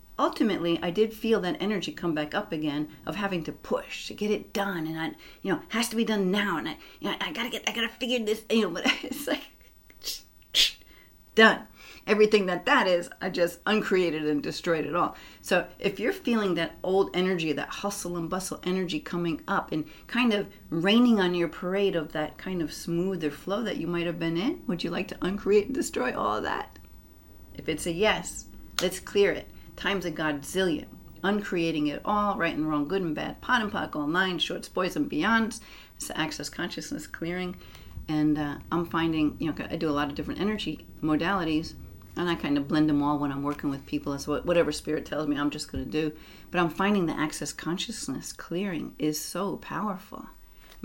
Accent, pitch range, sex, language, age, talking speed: American, 150-200 Hz, female, English, 40-59, 210 wpm